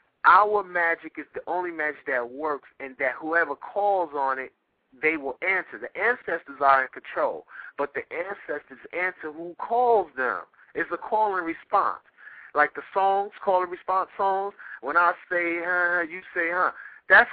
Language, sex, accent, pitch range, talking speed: English, male, American, 145-210 Hz, 170 wpm